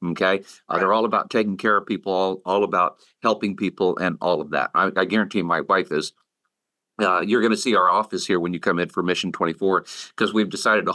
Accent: American